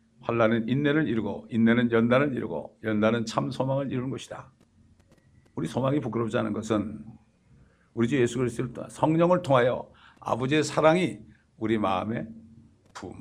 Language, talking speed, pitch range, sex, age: English, 125 wpm, 115-160 Hz, male, 60-79